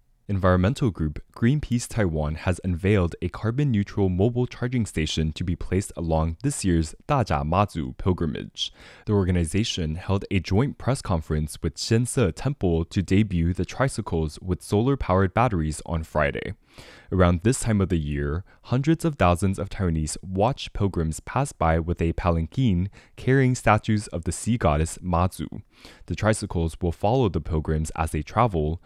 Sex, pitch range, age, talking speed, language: male, 85-110 Hz, 20-39, 150 wpm, English